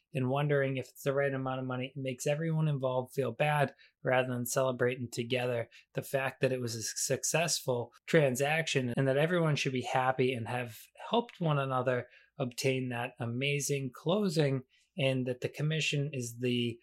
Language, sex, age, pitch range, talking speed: English, male, 20-39, 130-155 Hz, 170 wpm